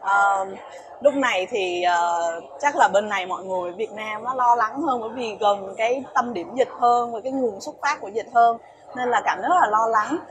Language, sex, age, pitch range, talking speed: Vietnamese, female, 20-39, 210-270 Hz, 240 wpm